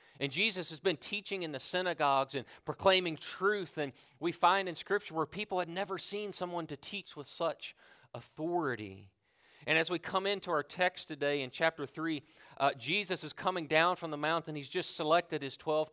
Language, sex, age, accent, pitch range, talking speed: English, male, 40-59, American, 120-175 Hz, 190 wpm